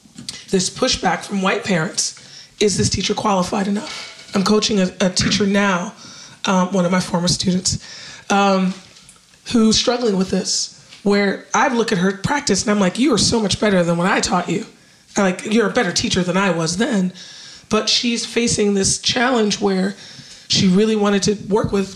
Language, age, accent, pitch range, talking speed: English, 30-49, American, 190-215 Hz, 185 wpm